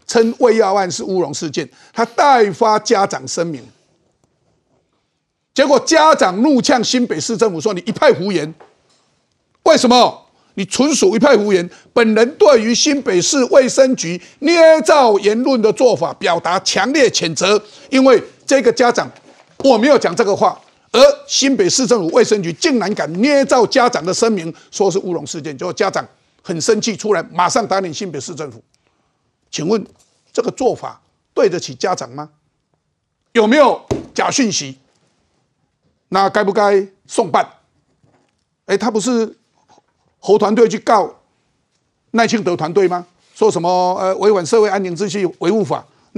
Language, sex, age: Chinese, male, 50-69